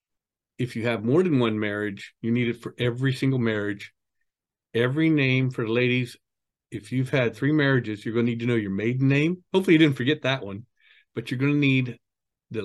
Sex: male